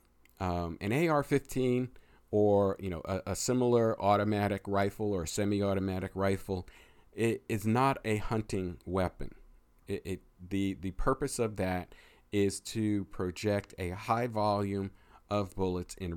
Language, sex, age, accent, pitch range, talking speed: English, male, 50-69, American, 90-105 Hz, 135 wpm